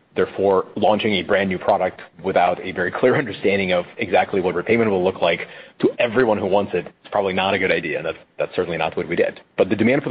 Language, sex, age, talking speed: English, male, 30-49, 245 wpm